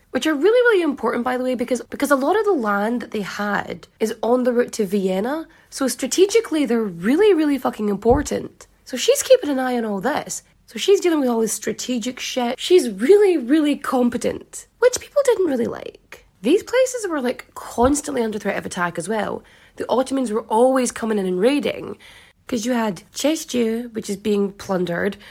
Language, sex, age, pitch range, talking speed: English, female, 20-39, 210-290 Hz, 195 wpm